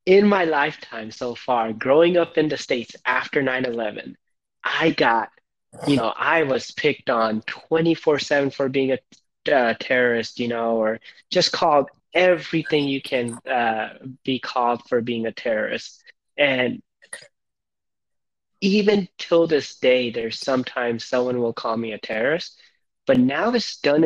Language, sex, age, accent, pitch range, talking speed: English, male, 20-39, American, 115-150 Hz, 145 wpm